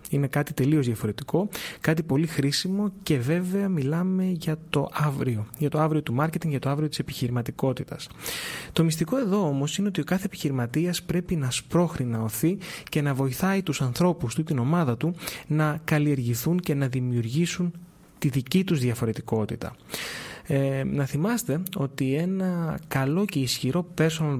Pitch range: 135-175 Hz